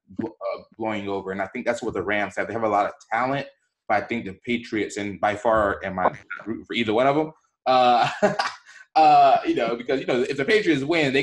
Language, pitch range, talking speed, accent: English, 95-120 Hz, 245 wpm, American